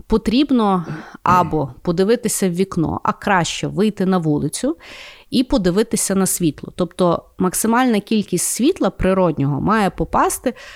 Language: Ukrainian